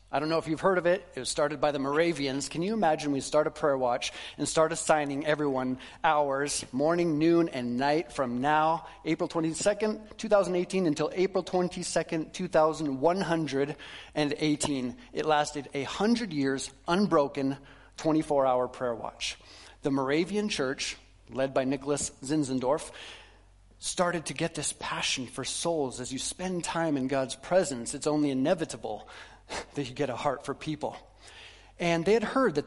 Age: 30-49